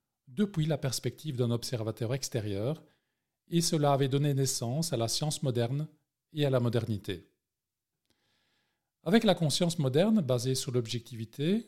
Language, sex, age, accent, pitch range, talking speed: French, male, 40-59, French, 120-155 Hz, 135 wpm